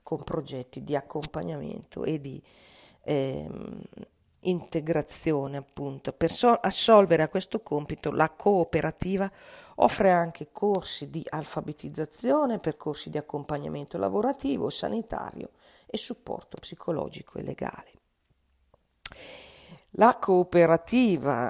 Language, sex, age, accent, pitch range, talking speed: Italian, female, 40-59, native, 155-190 Hz, 95 wpm